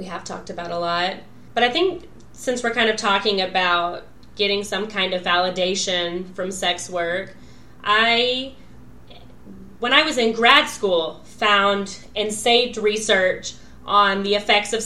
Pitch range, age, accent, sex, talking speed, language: 185-230 Hz, 20-39, American, female, 155 wpm, English